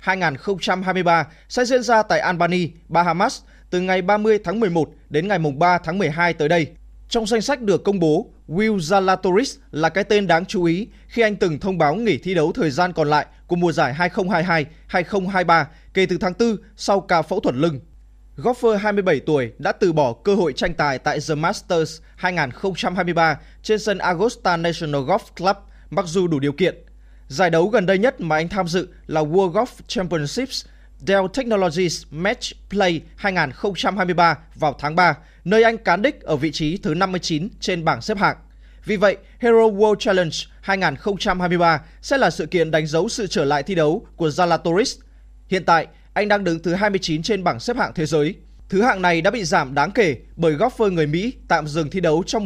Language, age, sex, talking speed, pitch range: Vietnamese, 20-39, male, 190 wpm, 160-205 Hz